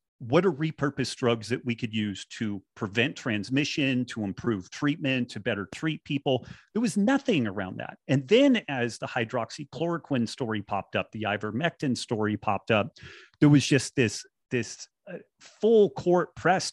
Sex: male